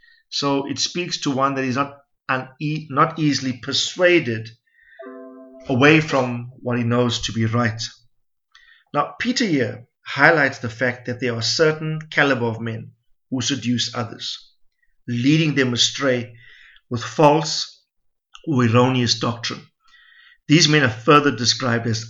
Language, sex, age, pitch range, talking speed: English, male, 50-69, 120-150 Hz, 135 wpm